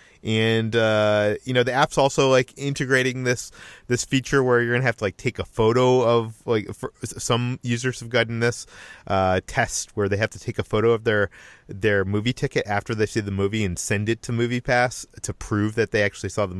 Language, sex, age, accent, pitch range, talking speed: English, male, 30-49, American, 105-125 Hz, 225 wpm